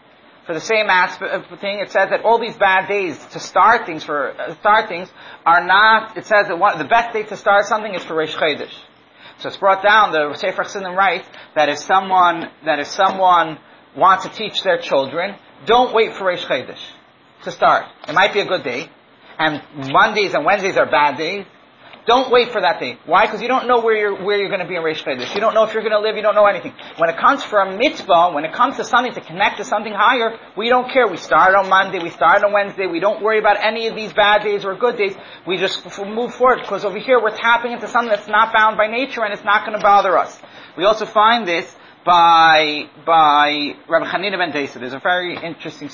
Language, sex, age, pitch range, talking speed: English, male, 40-59, 175-220 Hz, 235 wpm